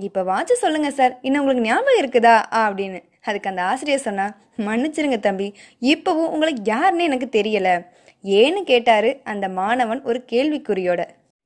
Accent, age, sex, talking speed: native, 20-39, female, 135 wpm